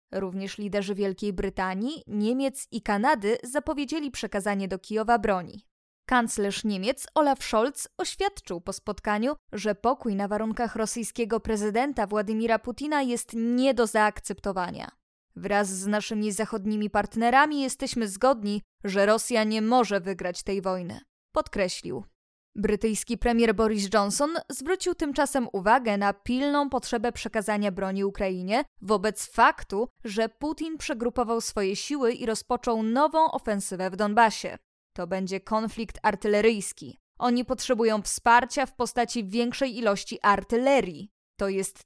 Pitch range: 205-250 Hz